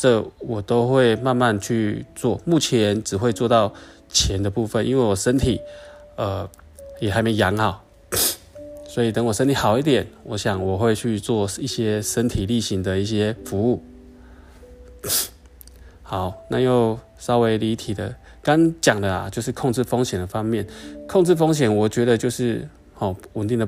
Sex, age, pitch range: male, 20-39, 100-125 Hz